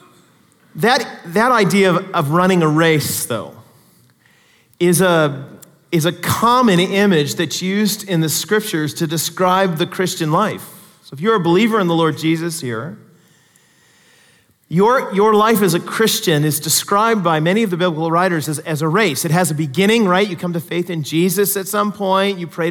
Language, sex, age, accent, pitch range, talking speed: English, male, 40-59, American, 155-195 Hz, 180 wpm